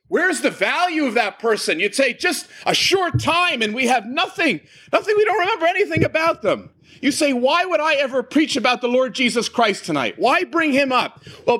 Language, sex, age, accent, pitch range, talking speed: English, male, 40-59, American, 190-275 Hz, 210 wpm